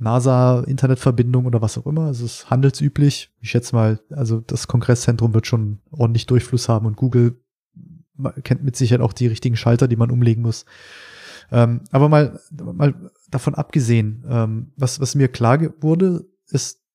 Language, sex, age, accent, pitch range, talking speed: German, male, 20-39, German, 120-135 Hz, 150 wpm